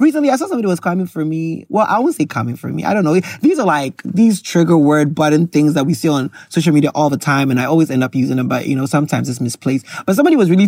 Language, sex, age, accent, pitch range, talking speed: English, male, 20-39, American, 145-210 Hz, 290 wpm